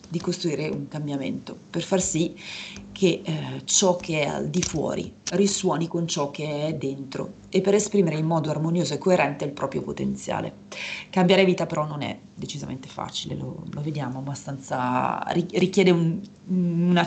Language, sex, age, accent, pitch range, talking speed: Italian, female, 30-49, native, 150-195 Hz, 160 wpm